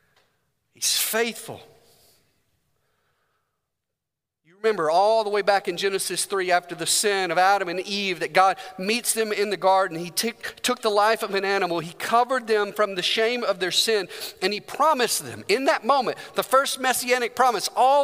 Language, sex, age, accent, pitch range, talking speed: English, male, 40-59, American, 195-255 Hz, 175 wpm